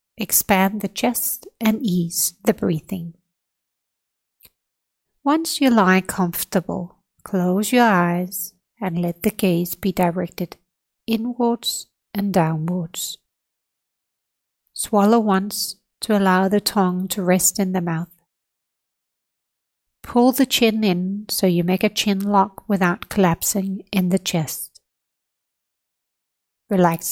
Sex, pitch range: female, 180-220 Hz